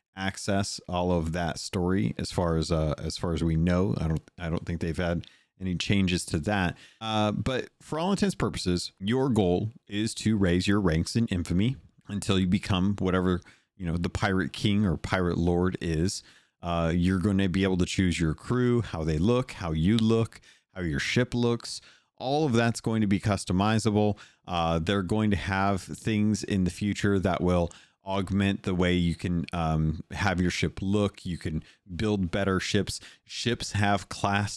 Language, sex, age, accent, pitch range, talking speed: English, male, 40-59, American, 85-105 Hz, 190 wpm